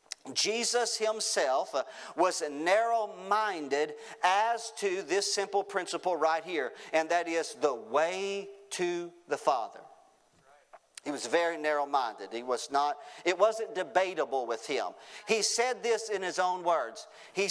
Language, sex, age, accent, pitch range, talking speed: English, male, 40-59, American, 175-230 Hz, 140 wpm